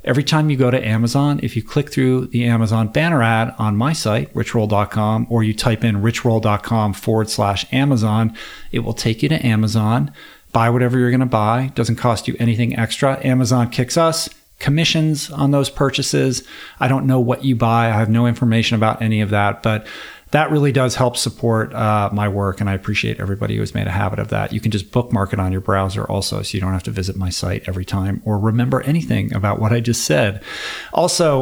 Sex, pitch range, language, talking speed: male, 105-130 Hz, English, 215 wpm